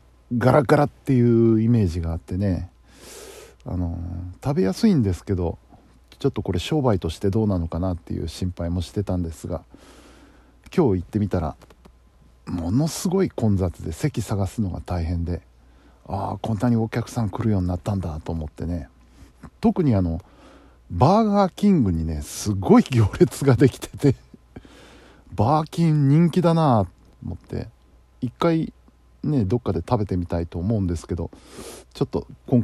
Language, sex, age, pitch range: Japanese, male, 50-69, 85-130 Hz